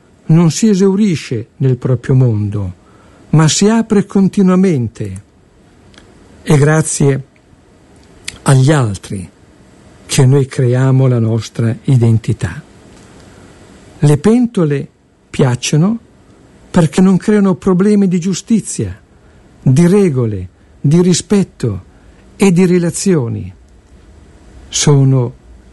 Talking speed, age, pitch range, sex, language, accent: 85 wpm, 60-79, 120-175 Hz, male, Italian, native